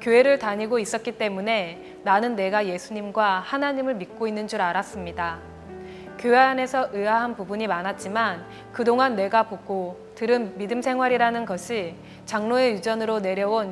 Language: Korean